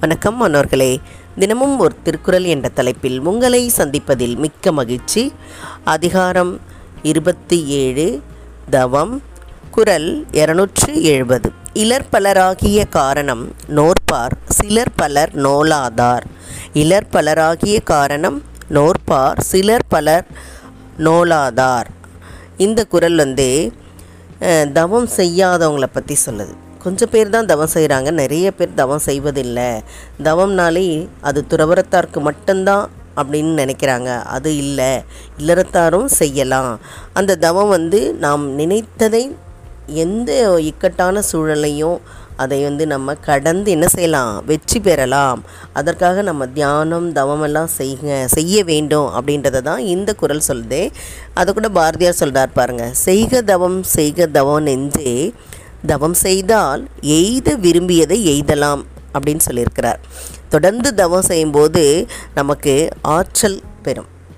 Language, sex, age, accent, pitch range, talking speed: Tamil, female, 20-39, native, 135-180 Hz, 95 wpm